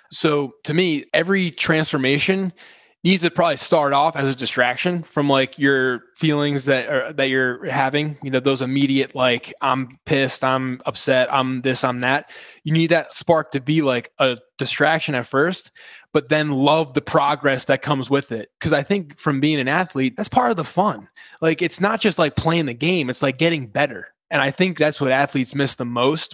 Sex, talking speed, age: male, 200 wpm, 20-39